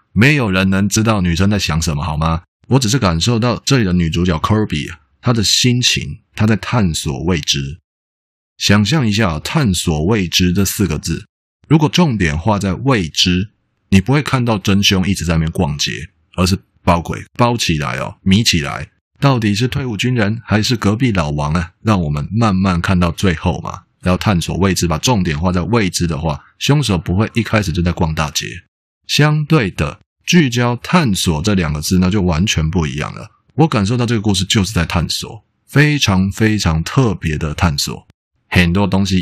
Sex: male